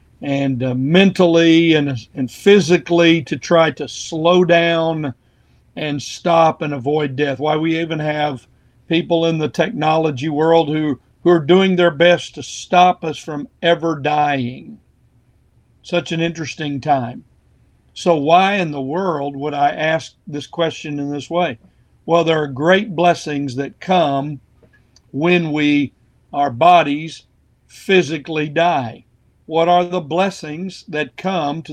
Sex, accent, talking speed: male, American, 140 wpm